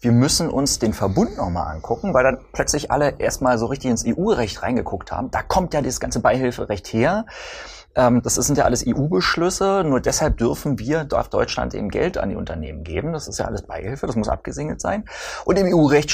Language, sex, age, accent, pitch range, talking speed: German, male, 30-49, German, 115-160 Hz, 200 wpm